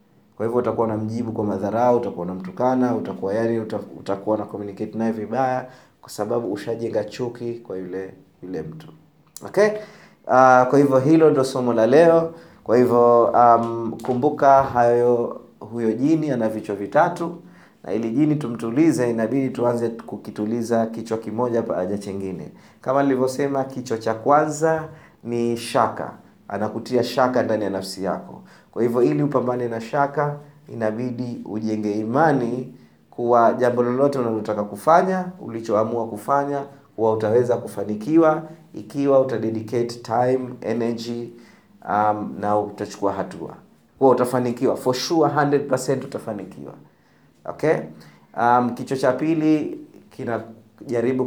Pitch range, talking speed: 110-140 Hz, 125 wpm